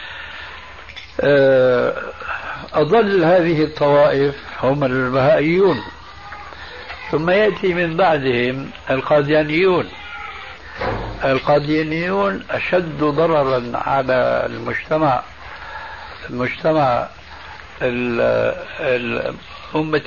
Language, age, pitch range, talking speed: Arabic, 60-79, 120-155 Hz, 50 wpm